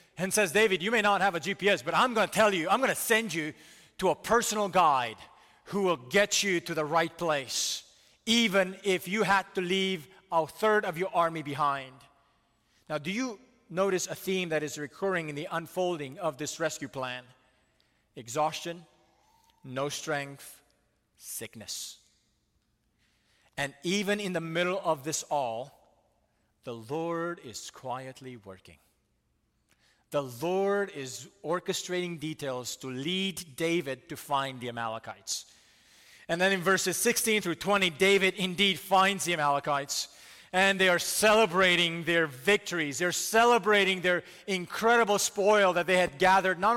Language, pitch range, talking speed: English, 145-195 Hz, 150 wpm